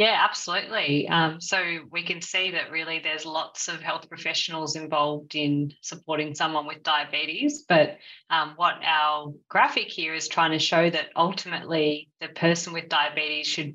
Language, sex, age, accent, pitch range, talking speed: English, female, 20-39, Australian, 155-175 Hz, 160 wpm